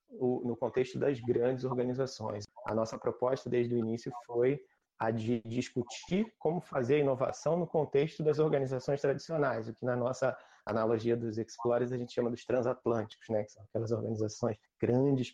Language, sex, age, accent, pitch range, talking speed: Portuguese, male, 30-49, Brazilian, 115-145 Hz, 165 wpm